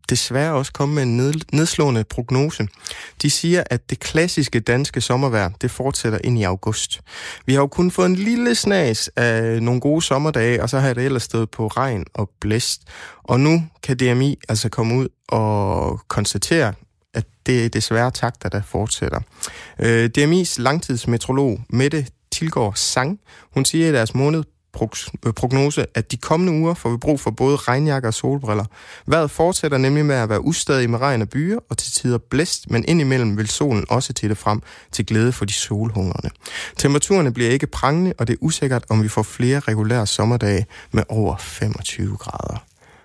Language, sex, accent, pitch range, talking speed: Danish, male, native, 110-135 Hz, 175 wpm